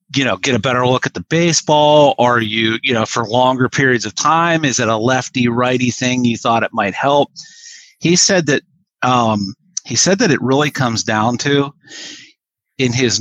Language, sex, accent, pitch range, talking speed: English, male, American, 110-140 Hz, 195 wpm